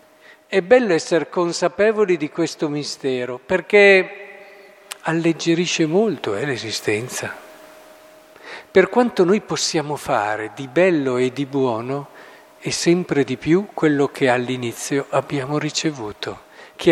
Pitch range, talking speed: 140-175 Hz, 115 wpm